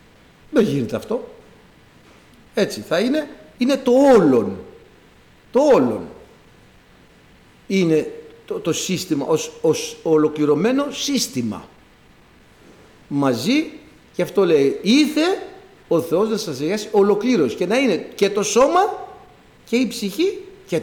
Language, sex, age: Greek, male, 60-79